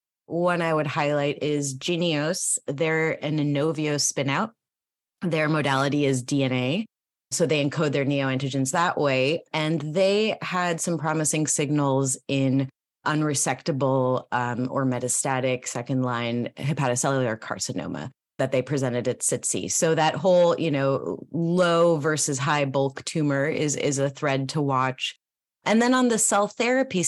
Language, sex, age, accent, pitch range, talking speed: English, female, 30-49, American, 135-160 Hz, 135 wpm